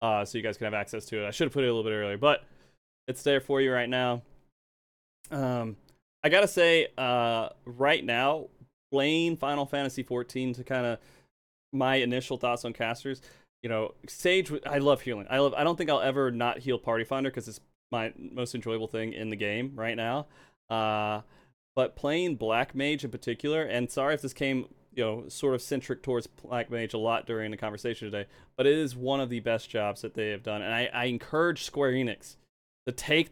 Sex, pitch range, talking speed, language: male, 115-135 Hz, 215 wpm, English